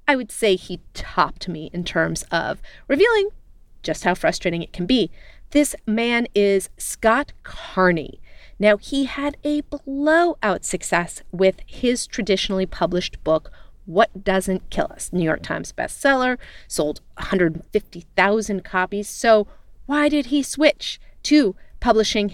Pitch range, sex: 175-220 Hz, female